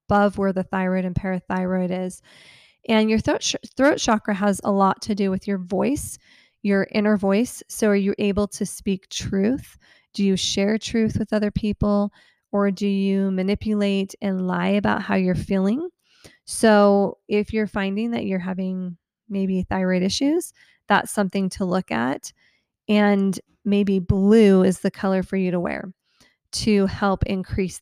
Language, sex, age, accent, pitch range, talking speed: English, female, 20-39, American, 185-210 Hz, 165 wpm